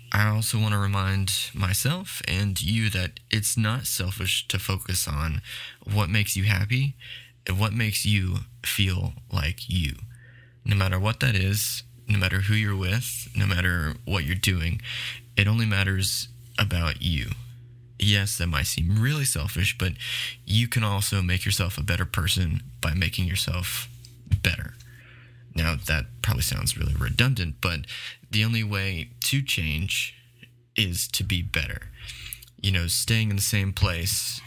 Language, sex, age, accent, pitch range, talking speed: English, male, 20-39, American, 95-120 Hz, 150 wpm